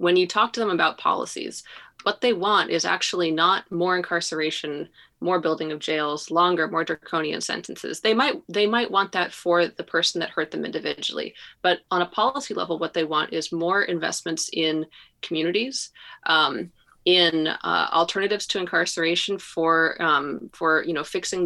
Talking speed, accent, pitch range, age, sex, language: 170 wpm, American, 170-210 Hz, 30-49, female, English